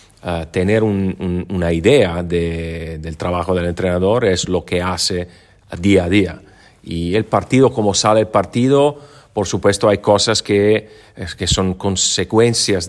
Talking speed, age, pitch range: 160 wpm, 40-59, 90-105 Hz